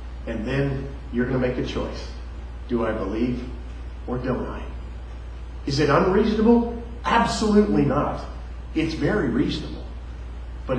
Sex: male